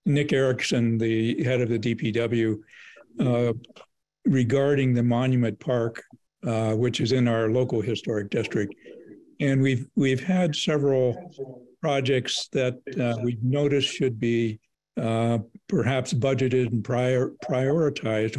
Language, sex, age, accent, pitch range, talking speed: English, male, 60-79, American, 115-135 Hz, 125 wpm